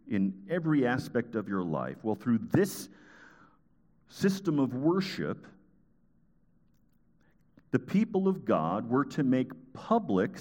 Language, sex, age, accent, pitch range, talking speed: English, male, 50-69, American, 95-145 Hz, 115 wpm